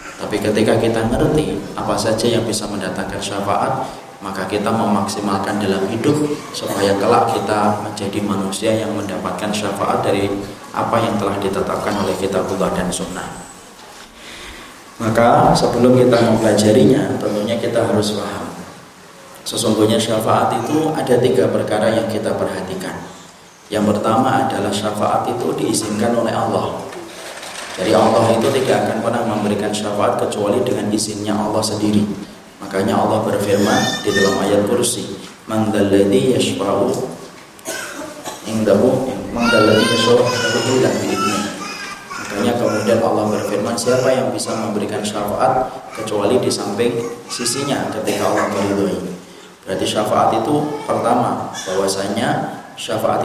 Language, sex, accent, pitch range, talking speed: Indonesian, male, native, 100-115 Hz, 120 wpm